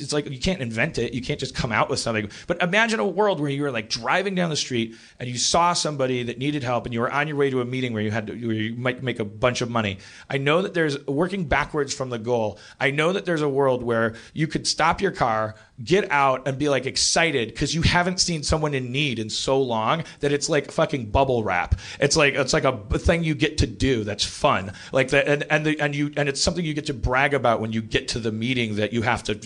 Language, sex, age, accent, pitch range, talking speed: English, male, 40-59, American, 115-150 Hz, 275 wpm